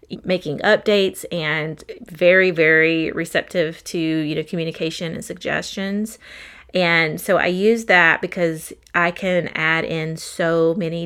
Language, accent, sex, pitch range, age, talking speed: English, American, female, 165-205 Hz, 30-49, 130 wpm